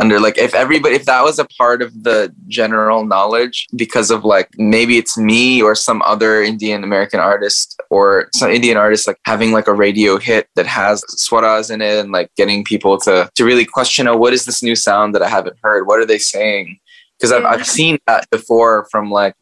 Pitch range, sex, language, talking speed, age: 100-130 Hz, male, Hindi, 220 wpm, 10-29